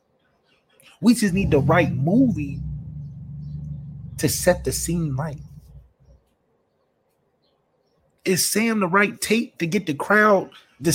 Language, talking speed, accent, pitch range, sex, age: English, 115 wpm, American, 150-210 Hz, male, 30-49